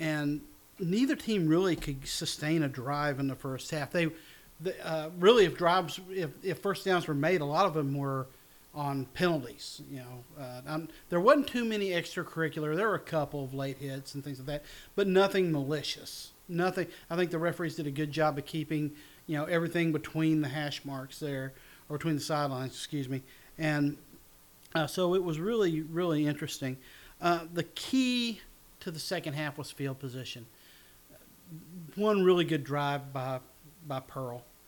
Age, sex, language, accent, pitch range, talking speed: 40-59, male, English, American, 140-175 Hz, 180 wpm